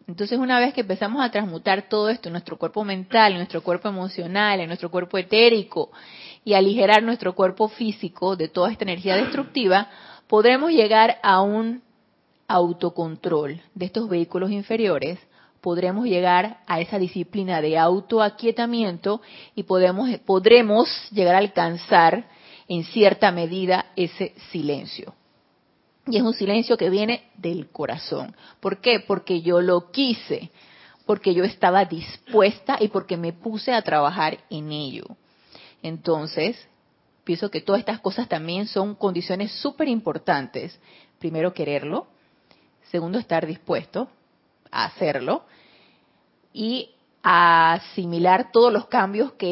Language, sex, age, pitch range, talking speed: Spanish, female, 30-49, 175-220 Hz, 130 wpm